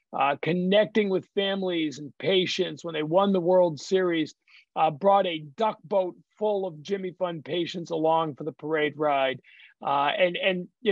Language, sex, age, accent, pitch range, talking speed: English, male, 40-59, American, 170-220 Hz, 170 wpm